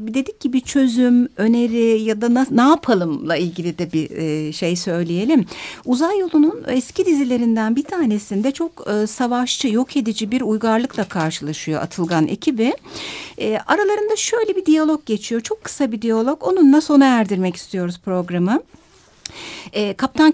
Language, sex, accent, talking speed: Turkish, female, native, 135 wpm